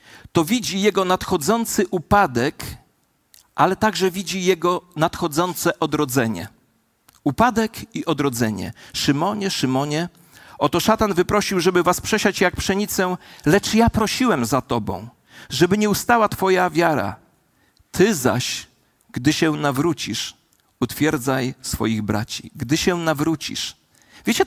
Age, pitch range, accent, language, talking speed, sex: 40-59, 150-220 Hz, native, Polish, 115 wpm, male